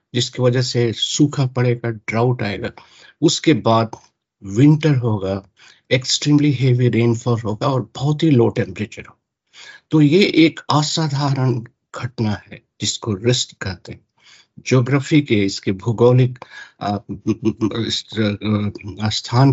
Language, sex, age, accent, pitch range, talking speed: Hindi, male, 60-79, native, 110-150 Hz, 65 wpm